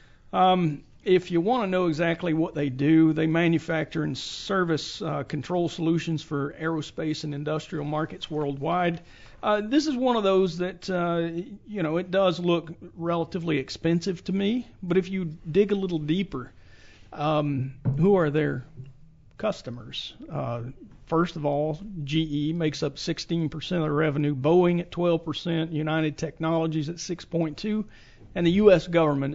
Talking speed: 150 wpm